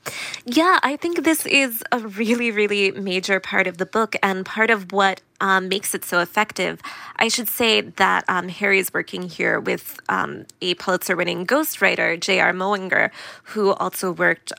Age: 20-39